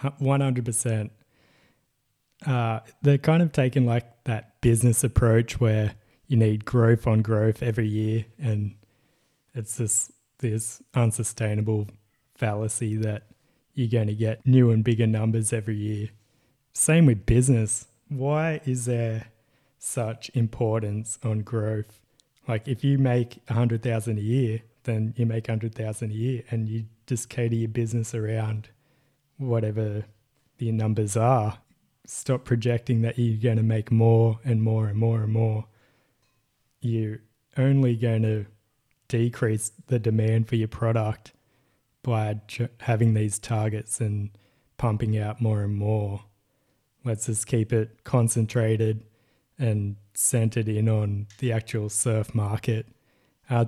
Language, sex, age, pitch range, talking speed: English, male, 20-39, 110-125 Hz, 135 wpm